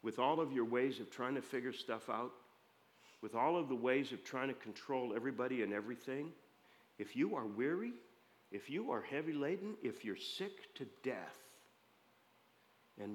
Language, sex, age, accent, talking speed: English, male, 50-69, American, 175 wpm